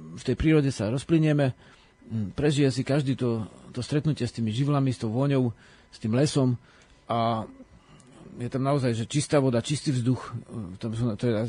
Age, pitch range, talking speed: 40-59, 115-140 Hz, 165 wpm